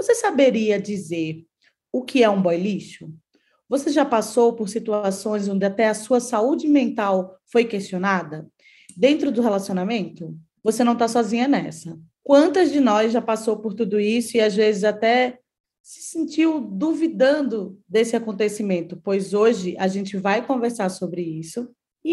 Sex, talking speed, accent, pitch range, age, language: female, 150 wpm, Brazilian, 195-280 Hz, 20-39, Portuguese